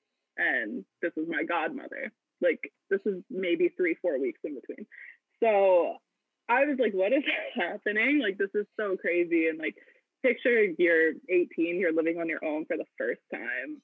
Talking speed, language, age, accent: 175 wpm, English, 20-39, American